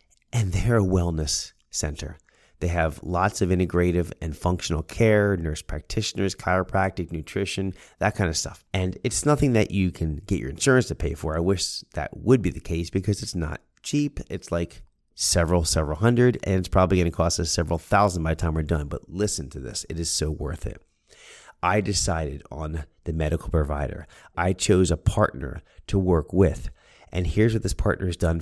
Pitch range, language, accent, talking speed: 80-95 Hz, English, American, 195 wpm